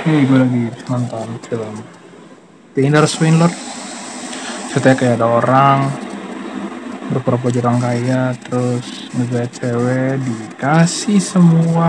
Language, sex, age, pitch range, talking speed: English, male, 20-39, 125-205 Hz, 95 wpm